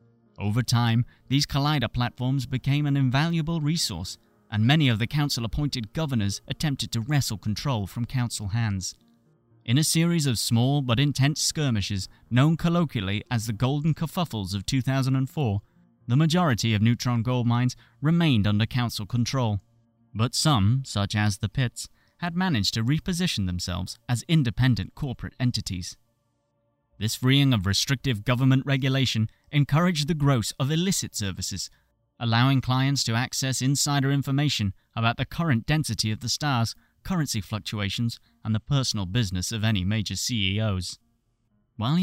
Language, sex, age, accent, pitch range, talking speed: English, male, 30-49, British, 105-135 Hz, 140 wpm